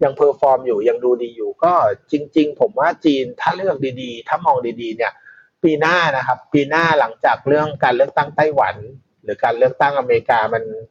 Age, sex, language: 30-49, male, Thai